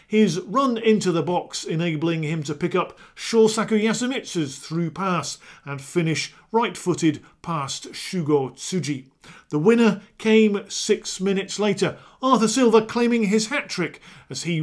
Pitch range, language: 155-220 Hz, English